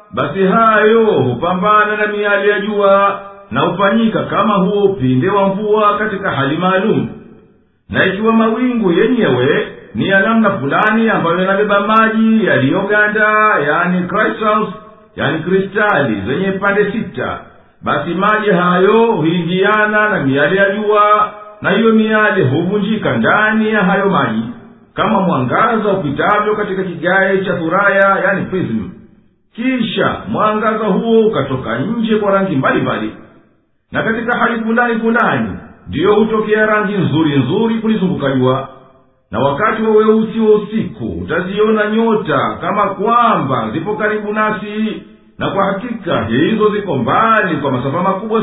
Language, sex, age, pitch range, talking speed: Swahili, male, 50-69, 180-215 Hz, 125 wpm